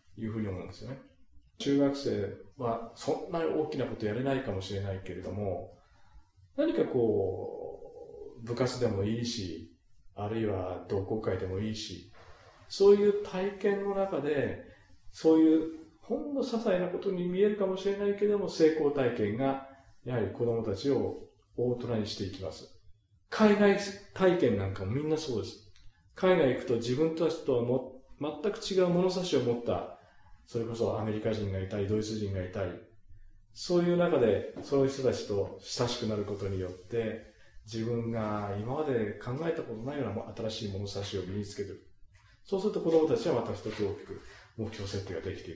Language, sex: Japanese, male